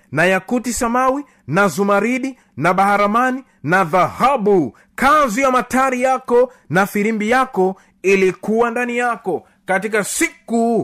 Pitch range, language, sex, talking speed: 185-245 Hz, Swahili, male, 115 wpm